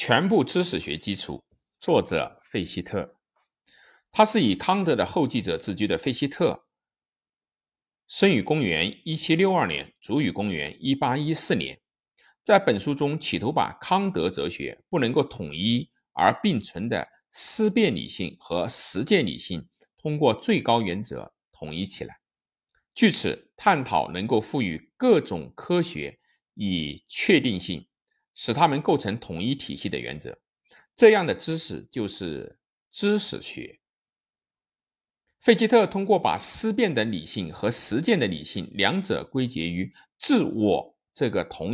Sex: male